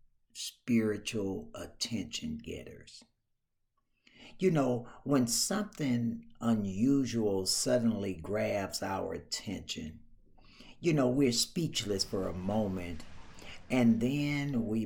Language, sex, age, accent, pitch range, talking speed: English, male, 60-79, American, 95-120 Hz, 85 wpm